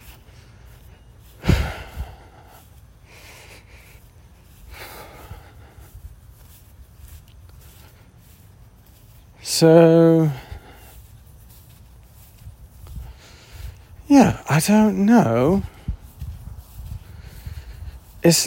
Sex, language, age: male, English, 40-59